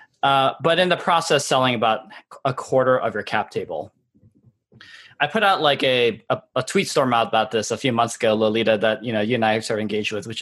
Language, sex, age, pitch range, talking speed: English, male, 20-39, 110-145 Hz, 230 wpm